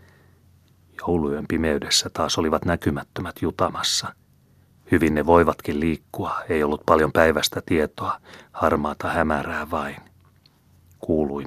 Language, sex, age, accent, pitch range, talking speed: Finnish, male, 30-49, native, 75-85 Hz, 100 wpm